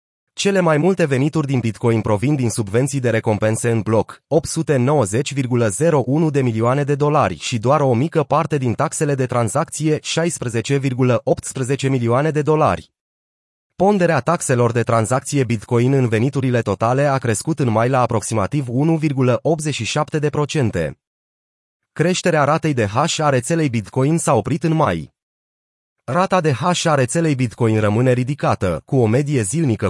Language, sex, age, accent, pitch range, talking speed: Romanian, male, 30-49, native, 115-150 Hz, 140 wpm